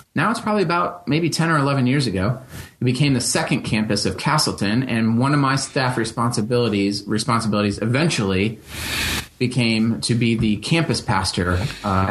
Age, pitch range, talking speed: 30-49, 105-135 Hz, 160 wpm